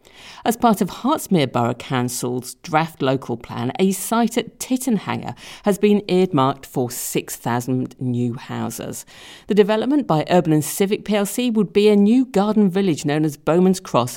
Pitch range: 140-210 Hz